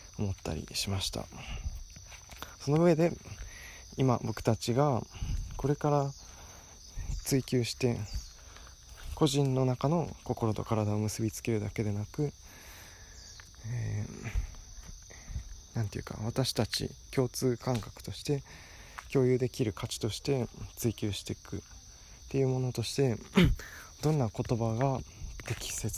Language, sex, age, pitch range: Japanese, male, 20-39, 90-120 Hz